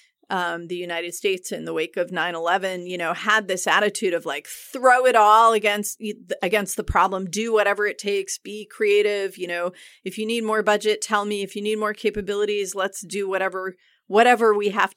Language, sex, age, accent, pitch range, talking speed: English, female, 30-49, American, 190-240 Hz, 195 wpm